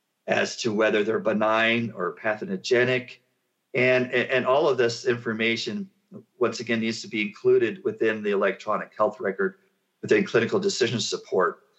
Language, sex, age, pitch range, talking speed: English, male, 50-69, 110-165 Hz, 150 wpm